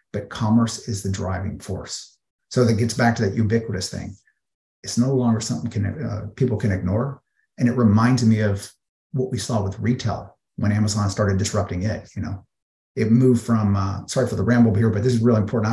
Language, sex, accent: English, male, American